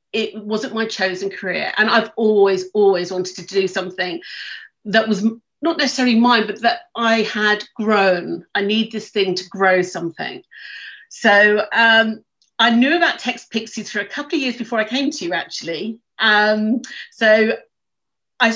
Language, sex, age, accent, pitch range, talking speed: English, female, 40-59, British, 195-245 Hz, 160 wpm